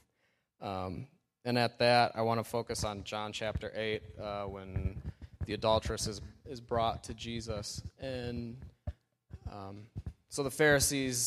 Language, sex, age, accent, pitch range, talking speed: English, male, 20-39, American, 100-120 Hz, 135 wpm